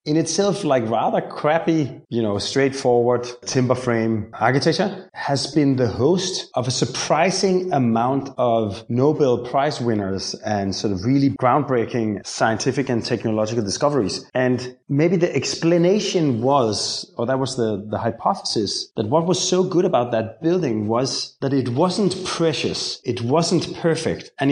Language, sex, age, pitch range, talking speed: English, male, 30-49, 115-155 Hz, 145 wpm